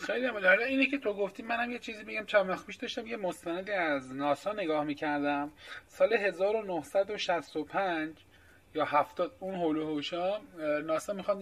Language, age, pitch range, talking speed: Persian, 30-49, 150-210 Hz, 140 wpm